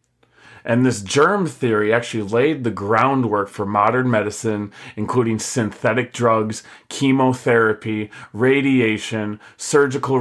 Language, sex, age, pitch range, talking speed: English, male, 30-49, 110-135 Hz, 100 wpm